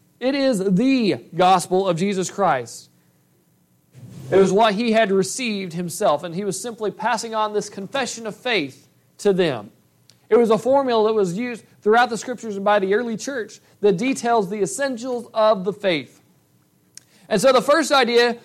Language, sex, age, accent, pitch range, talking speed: English, male, 40-59, American, 180-245 Hz, 170 wpm